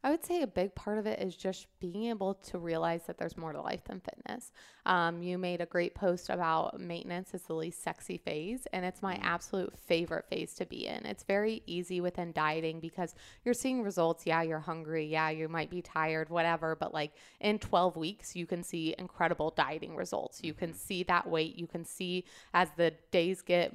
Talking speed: 210 wpm